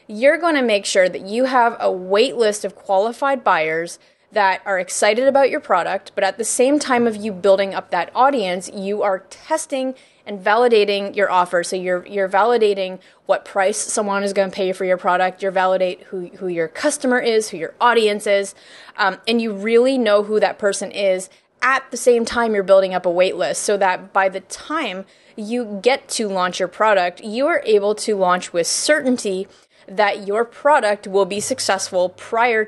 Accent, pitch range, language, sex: American, 190-240 Hz, English, female